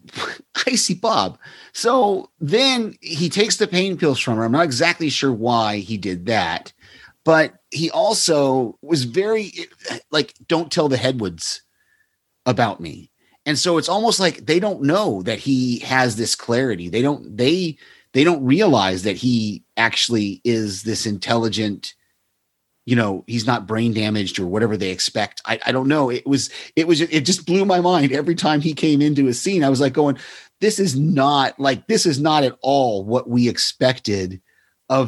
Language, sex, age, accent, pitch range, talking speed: English, male, 30-49, American, 110-155 Hz, 180 wpm